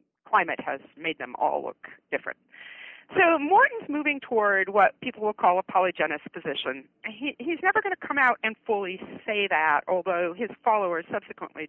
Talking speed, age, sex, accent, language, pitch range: 170 wpm, 50-69, female, American, English, 180-255 Hz